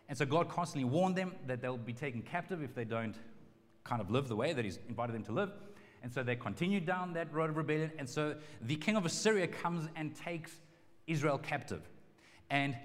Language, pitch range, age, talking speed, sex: English, 130-165 Hz, 30-49, 215 wpm, male